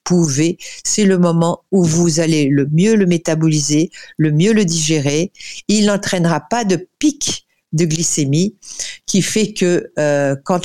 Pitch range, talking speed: 150-185 Hz, 150 wpm